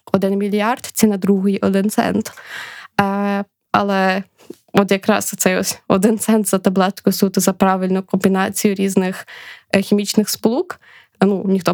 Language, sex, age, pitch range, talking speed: Ukrainian, female, 20-39, 195-225 Hz, 130 wpm